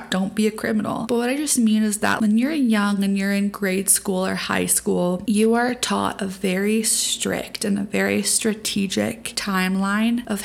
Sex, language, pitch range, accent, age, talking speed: female, English, 200-230 Hz, American, 20-39, 195 wpm